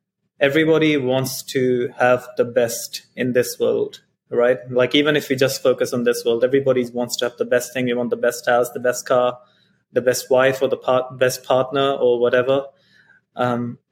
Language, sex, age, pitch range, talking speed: English, male, 20-39, 125-145 Hz, 195 wpm